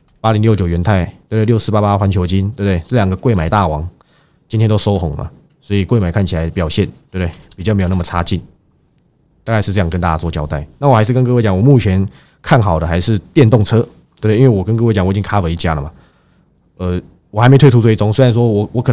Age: 20-39